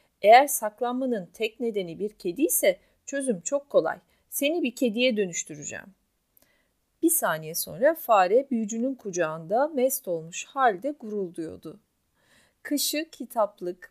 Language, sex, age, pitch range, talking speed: Turkish, female, 40-59, 190-285 Hz, 110 wpm